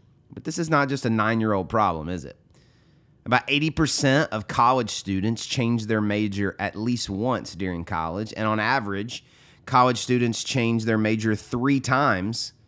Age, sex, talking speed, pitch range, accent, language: 30-49, male, 155 wpm, 105-130 Hz, American, English